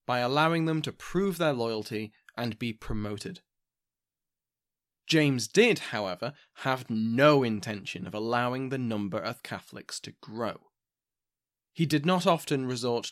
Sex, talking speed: male, 135 wpm